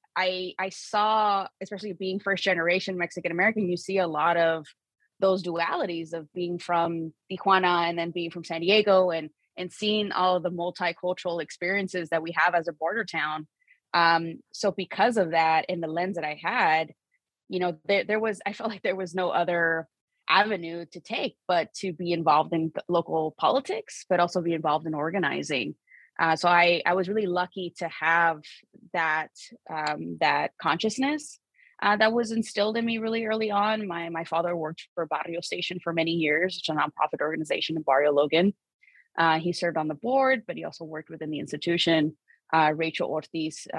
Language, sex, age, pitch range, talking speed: English, female, 20-39, 160-200 Hz, 185 wpm